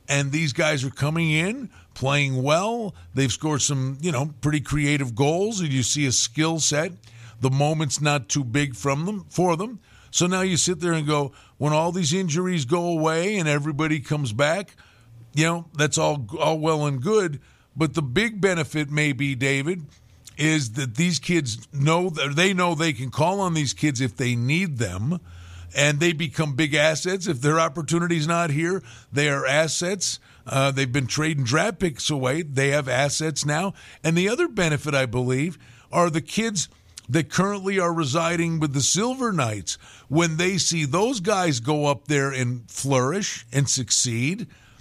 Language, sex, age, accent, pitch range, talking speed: English, male, 50-69, American, 135-175 Hz, 180 wpm